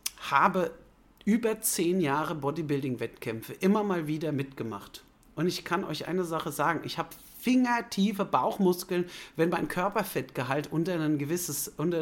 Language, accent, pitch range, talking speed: German, German, 155-205 Hz, 125 wpm